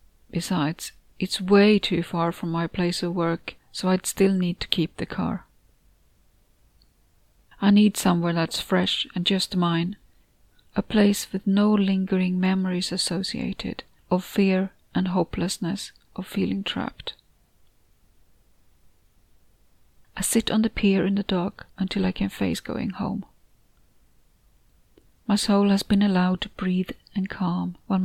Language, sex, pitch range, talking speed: English, female, 175-195 Hz, 135 wpm